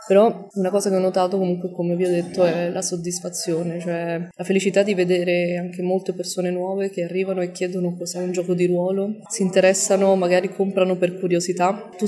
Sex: female